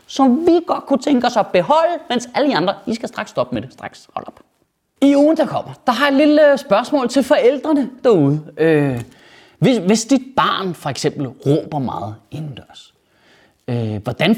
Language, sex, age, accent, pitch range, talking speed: Danish, male, 30-49, native, 150-230 Hz, 190 wpm